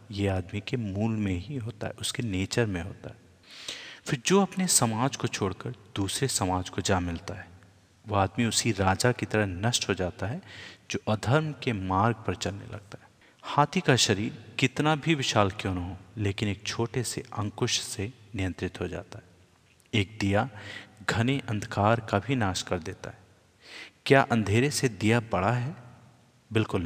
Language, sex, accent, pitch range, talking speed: Hindi, male, native, 95-120 Hz, 175 wpm